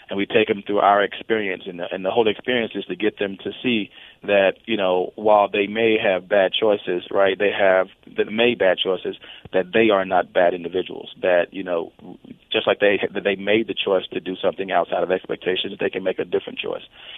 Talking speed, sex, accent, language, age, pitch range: 215 wpm, male, American, English, 30-49, 95-110 Hz